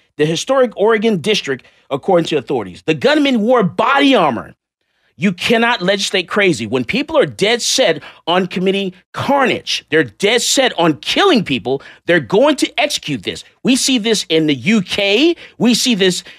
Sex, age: male, 40-59